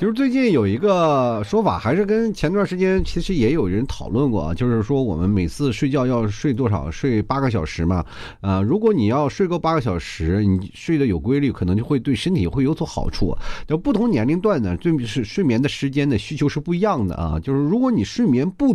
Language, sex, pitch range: Chinese, male, 100-160 Hz